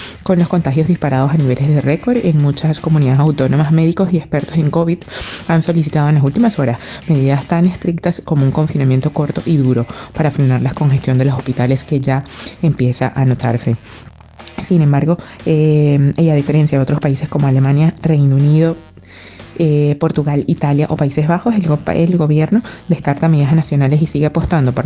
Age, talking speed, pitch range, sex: 20-39, 175 wpm, 135-160 Hz, female